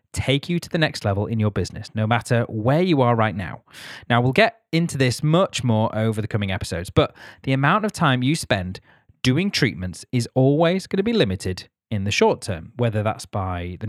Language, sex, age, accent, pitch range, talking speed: English, male, 30-49, British, 110-150 Hz, 215 wpm